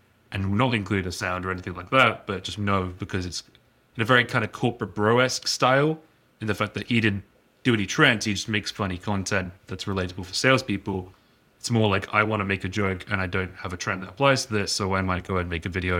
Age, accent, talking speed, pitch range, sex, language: 30-49, British, 255 wpm, 95-115 Hz, male, English